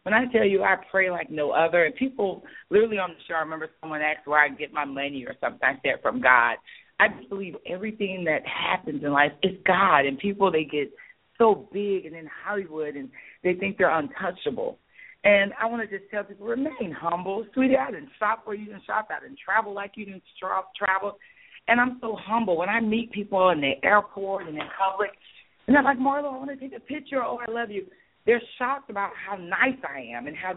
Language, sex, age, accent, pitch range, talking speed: English, female, 40-59, American, 165-220 Hz, 225 wpm